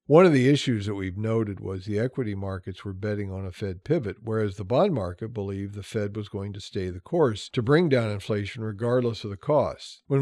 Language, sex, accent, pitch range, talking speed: English, male, American, 105-130 Hz, 230 wpm